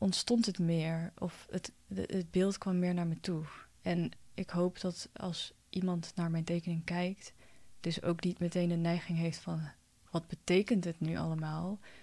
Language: Dutch